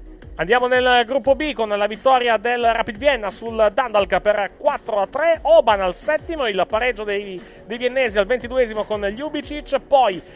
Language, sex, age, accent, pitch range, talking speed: Italian, male, 30-49, native, 205-270 Hz, 175 wpm